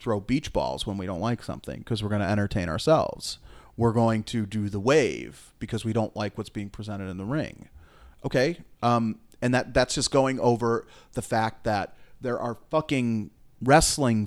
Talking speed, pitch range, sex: 190 wpm, 105-130 Hz, male